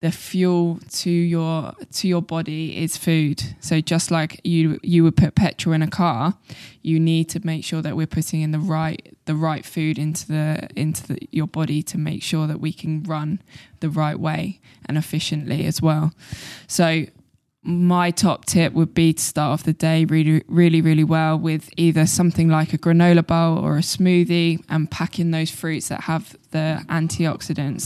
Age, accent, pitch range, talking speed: 20-39, British, 155-170 Hz, 190 wpm